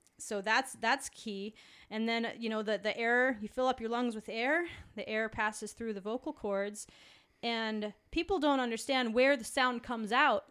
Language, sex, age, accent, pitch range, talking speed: English, female, 30-49, American, 220-290 Hz, 195 wpm